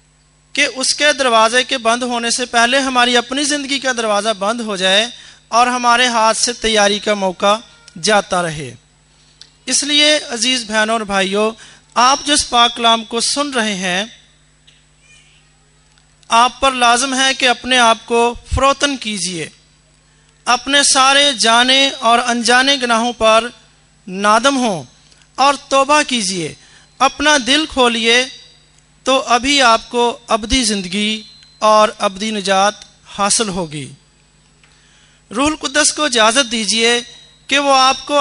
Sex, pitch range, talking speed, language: male, 215-265 Hz, 125 wpm, Hindi